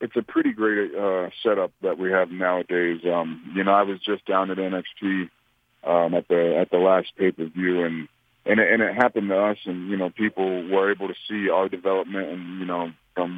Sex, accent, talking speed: male, American, 225 wpm